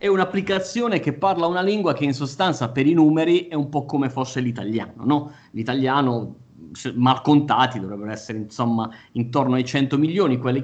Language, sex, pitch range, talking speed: Italian, male, 120-150 Hz, 170 wpm